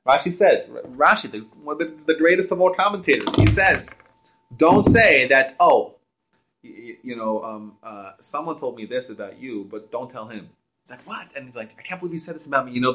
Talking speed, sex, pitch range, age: 220 wpm, male, 135-215 Hz, 30-49